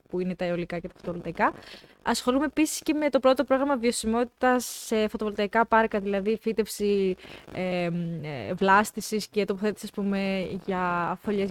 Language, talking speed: Greek, 150 wpm